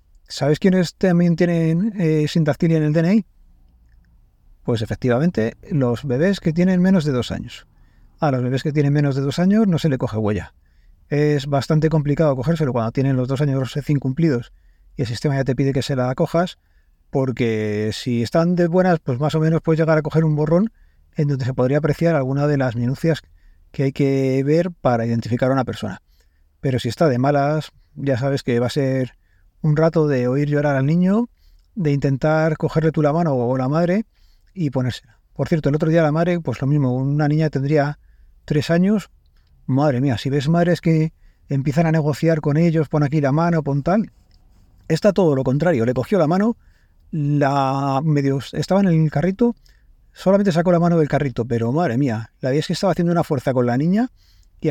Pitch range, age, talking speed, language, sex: 125-165 Hz, 30-49, 200 wpm, English, male